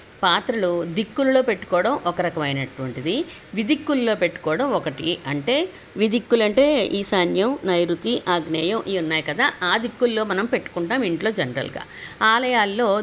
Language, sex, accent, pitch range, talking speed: Telugu, female, native, 160-245 Hz, 110 wpm